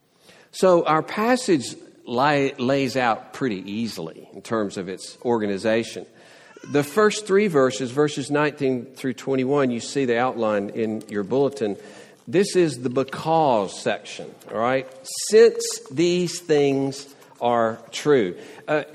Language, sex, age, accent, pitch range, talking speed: English, male, 50-69, American, 110-150 Hz, 125 wpm